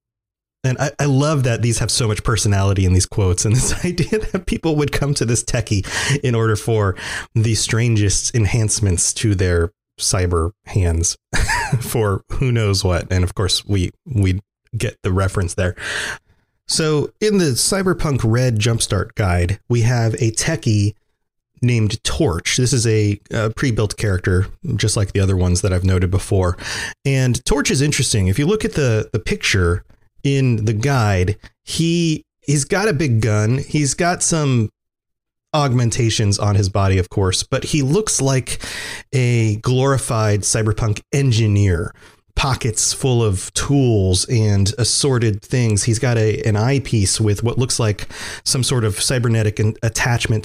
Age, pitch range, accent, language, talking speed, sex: 30-49, 100-130 Hz, American, English, 160 wpm, male